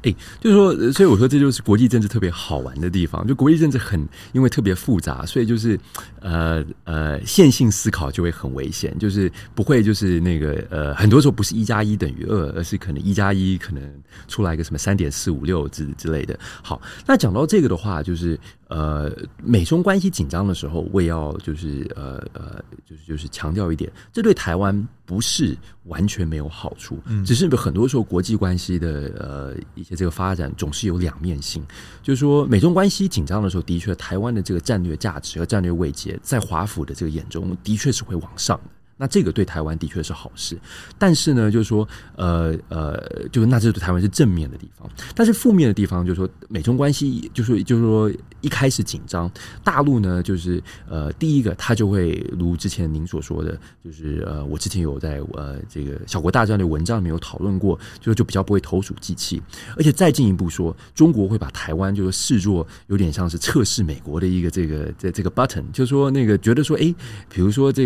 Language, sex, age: Chinese, male, 30-49